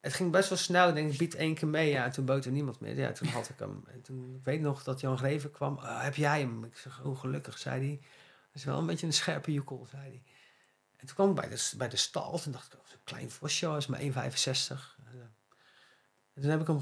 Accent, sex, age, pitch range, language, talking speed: Dutch, male, 40-59, 130-160 Hz, Dutch, 275 wpm